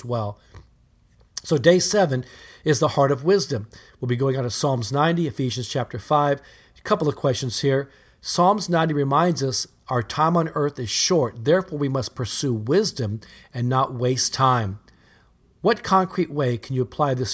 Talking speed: 175 wpm